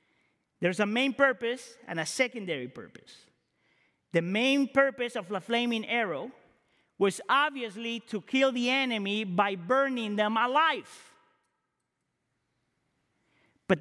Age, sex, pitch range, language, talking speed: 40-59, male, 205-275 Hz, English, 115 wpm